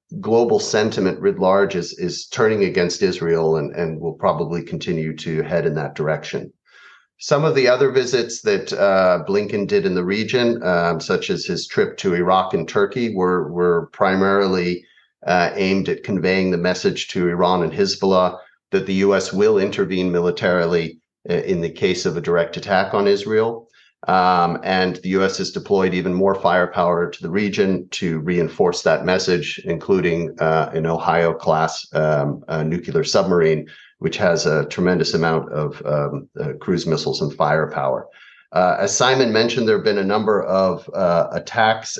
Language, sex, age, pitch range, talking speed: English, male, 40-59, 85-100 Hz, 165 wpm